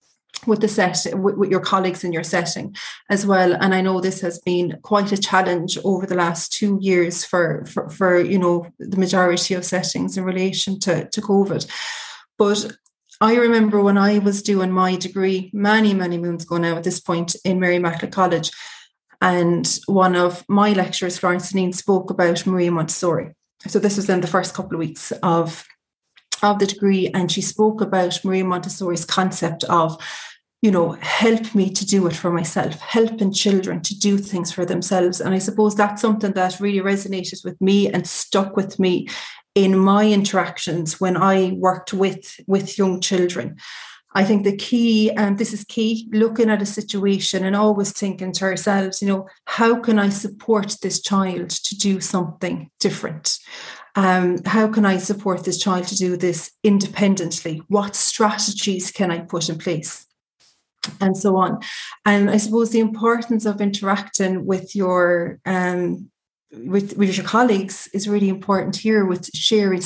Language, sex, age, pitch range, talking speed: English, female, 30-49, 180-205 Hz, 175 wpm